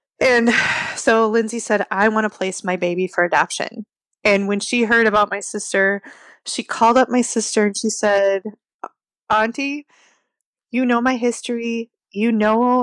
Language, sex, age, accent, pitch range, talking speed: English, female, 20-39, American, 210-240 Hz, 160 wpm